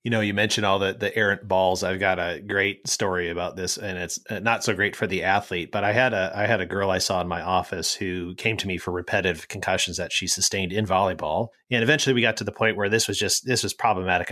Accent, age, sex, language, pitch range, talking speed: American, 30-49, male, English, 90-110 Hz, 265 wpm